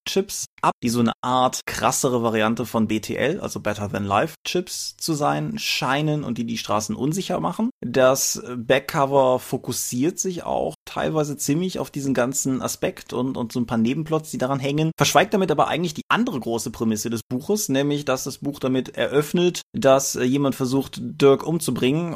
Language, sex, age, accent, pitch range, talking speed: German, male, 20-39, German, 115-150 Hz, 175 wpm